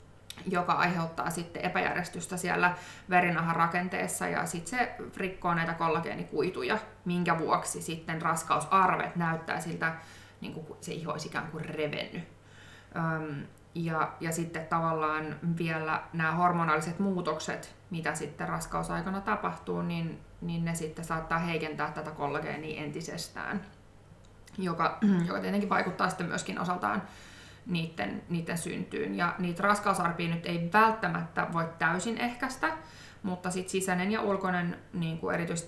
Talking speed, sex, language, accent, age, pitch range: 120 wpm, female, Finnish, native, 20-39, 160-180 Hz